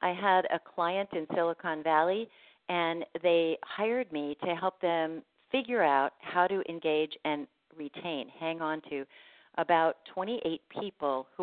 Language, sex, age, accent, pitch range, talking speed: English, female, 50-69, American, 150-175 Hz, 145 wpm